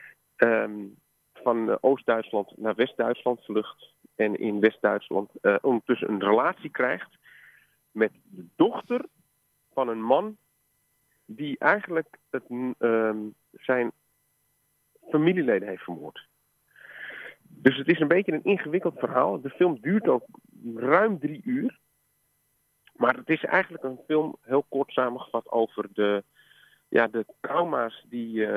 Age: 40-59